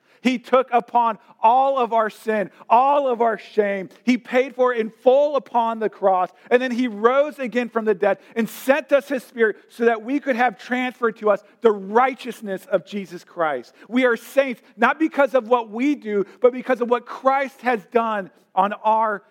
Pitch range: 195-235 Hz